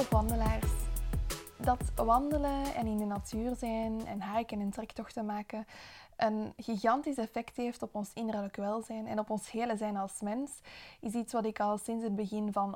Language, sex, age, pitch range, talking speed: Dutch, female, 20-39, 205-240 Hz, 170 wpm